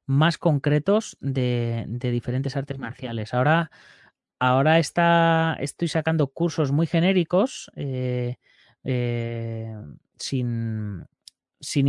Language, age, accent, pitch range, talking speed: Spanish, 20-39, Spanish, 125-155 Hz, 90 wpm